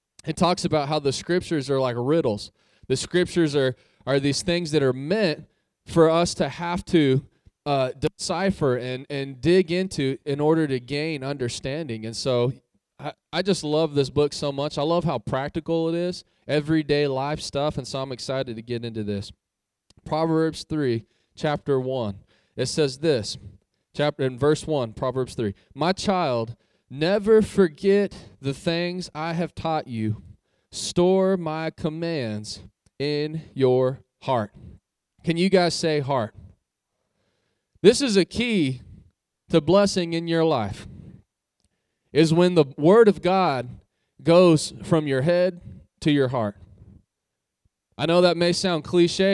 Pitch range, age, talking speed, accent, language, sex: 130-170 Hz, 20-39, 150 wpm, American, English, male